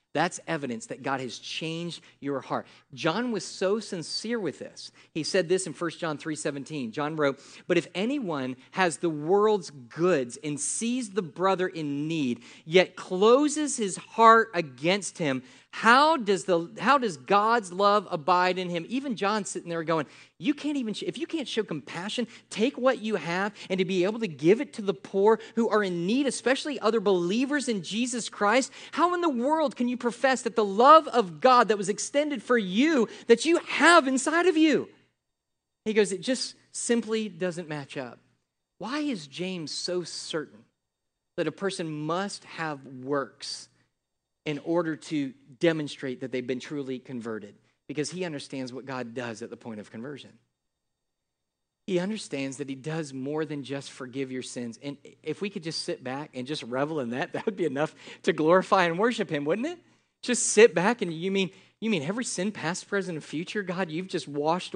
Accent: American